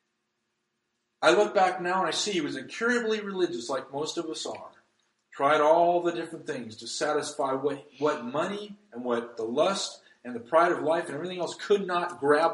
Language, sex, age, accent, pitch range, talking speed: English, male, 40-59, American, 120-150 Hz, 195 wpm